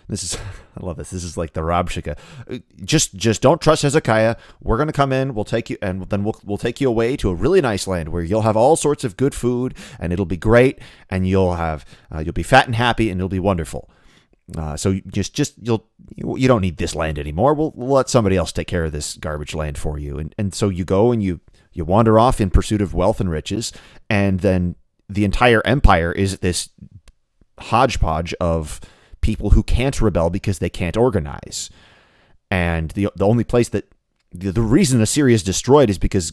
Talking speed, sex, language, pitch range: 215 wpm, male, English, 85-115 Hz